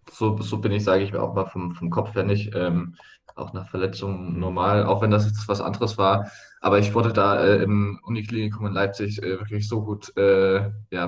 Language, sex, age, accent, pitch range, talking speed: German, male, 20-39, German, 95-105 Hz, 215 wpm